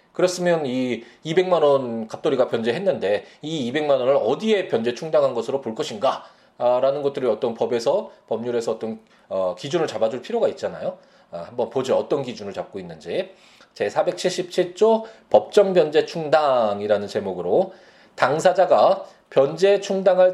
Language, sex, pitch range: Korean, male, 140-205 Hz